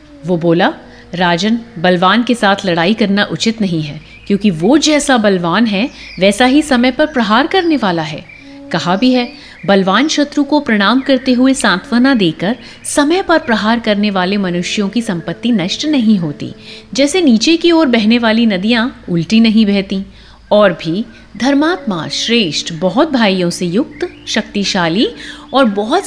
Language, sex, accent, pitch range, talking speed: Hindi, female, native, 190-275 Hz, 155 wpm